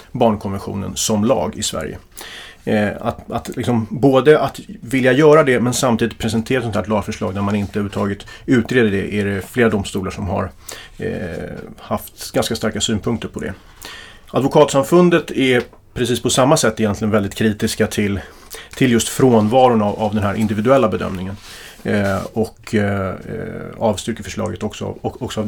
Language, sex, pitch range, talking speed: Swedish, male, 105-130 Hz, 160 wpm